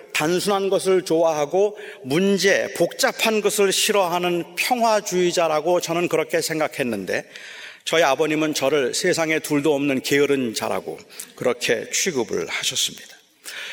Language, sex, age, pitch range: Korean, male, 40-59, 170-215 Hz